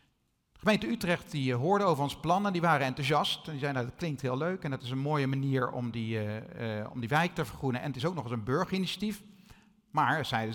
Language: Dutch